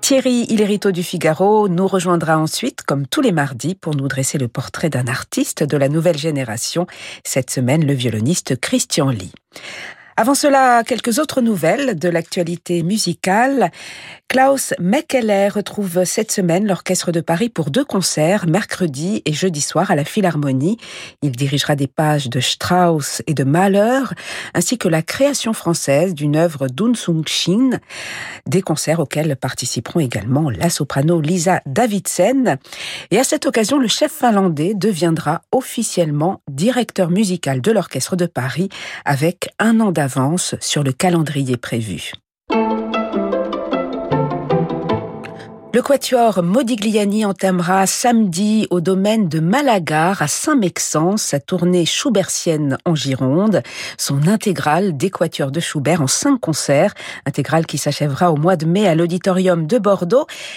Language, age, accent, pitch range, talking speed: French, 50-69, French, 145-205 Hz, 140 wpm